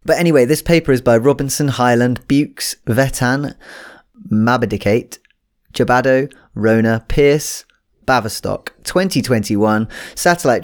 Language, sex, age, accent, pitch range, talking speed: English, male, 20-39, British, 105-130 Hz, 95 wpm